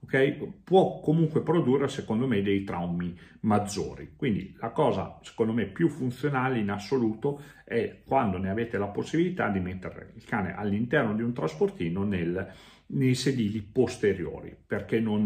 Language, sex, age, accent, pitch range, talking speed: Italian, male, 40-59, native, 95-130 Hz, 140 wpm